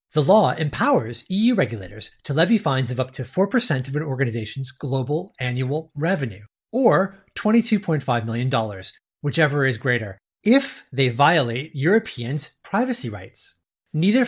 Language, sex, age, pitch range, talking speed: English, male, 30-49, 125-180 Hz, 130 wpm